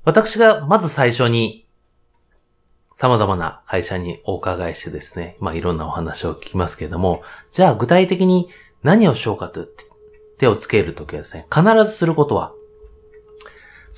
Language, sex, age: Japanese, male, 30-49